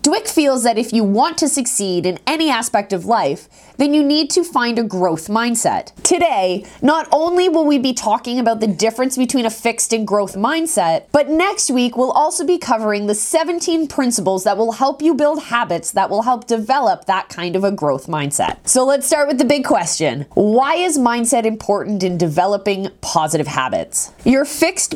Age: 20-39